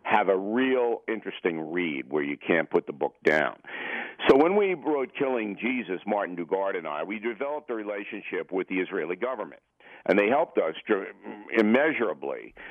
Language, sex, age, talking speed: English, male, 50-69, 165 wpm